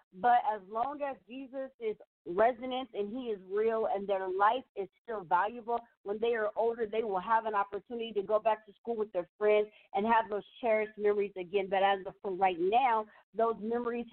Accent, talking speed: American, 205 wpm